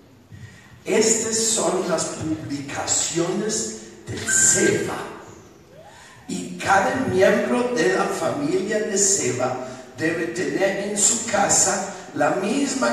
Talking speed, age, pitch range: 95 wpm, 50-69, 155-215 Hz